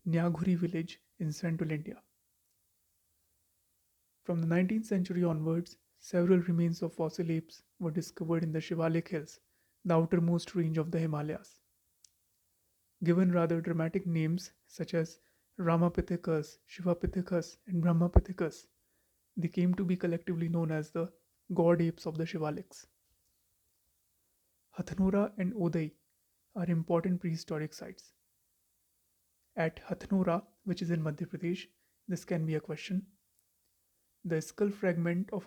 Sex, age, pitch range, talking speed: male, 30-49, 110-175 Hz, 125 wpm